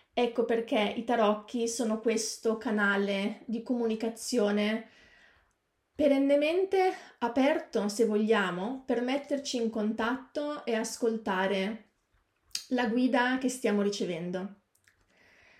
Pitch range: 215-265 Hz